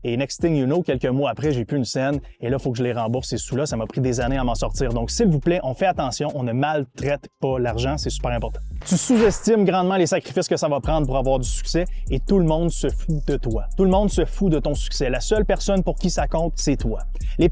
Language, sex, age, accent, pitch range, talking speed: French, male, 30-49, Canadian, 130-175 Hz, 290 wpm